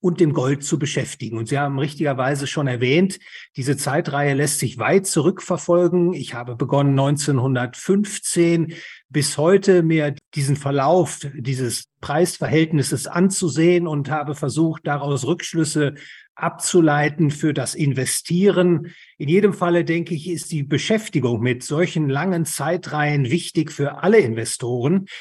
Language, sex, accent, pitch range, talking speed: German, male, German, 145-175 Hz, 130 wpm